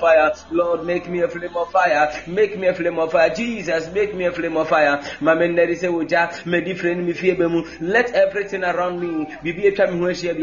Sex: male